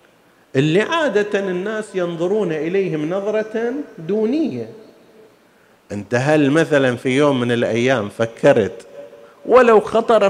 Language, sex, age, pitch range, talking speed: Arabic, male, 40-59, 130-180 Hz, 100 wpm